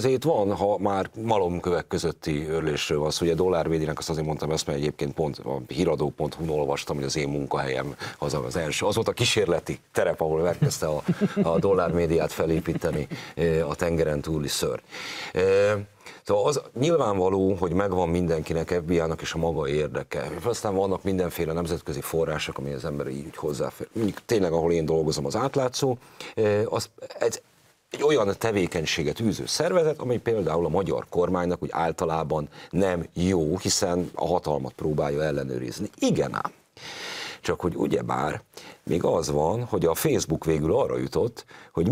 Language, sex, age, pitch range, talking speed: Hungarian, male, 40-59, 80-110 Hz, 145 wpm